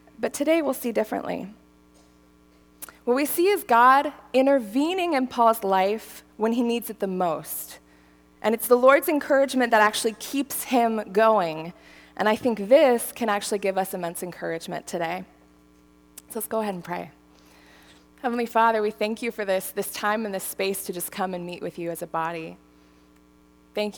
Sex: female